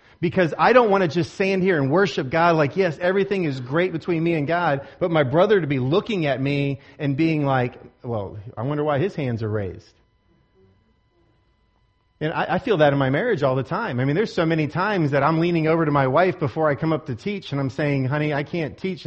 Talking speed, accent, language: 240 wpm, American, English